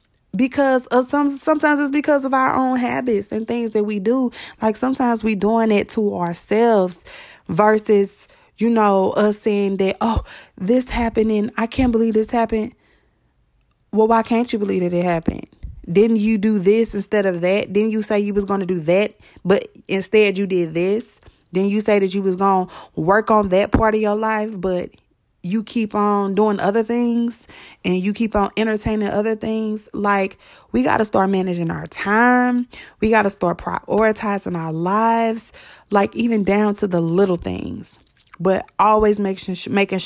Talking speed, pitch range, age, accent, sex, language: 185 wpm, 185-220 Hz, 20-39, American, female, English